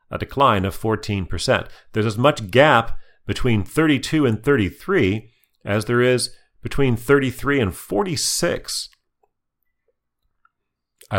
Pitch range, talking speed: 90-125 Hz, 105 wpm